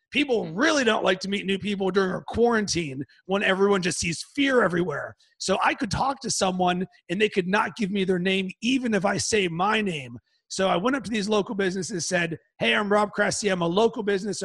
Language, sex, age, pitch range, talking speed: English, male, 30-49, 185-215 Hz, 230 wpm